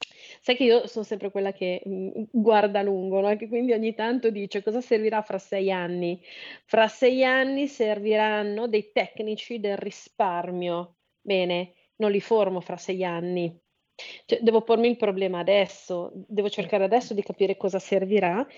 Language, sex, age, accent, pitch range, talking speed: Italian, female, 30-49, native, 195-230 Hz, 150 wpm